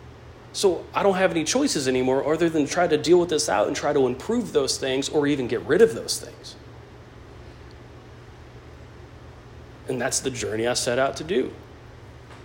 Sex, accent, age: male, American, 40-59